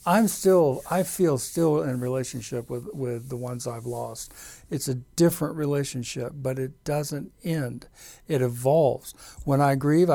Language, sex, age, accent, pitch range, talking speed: English, male, 60-79, American, 130-155 Hz, 155 wpm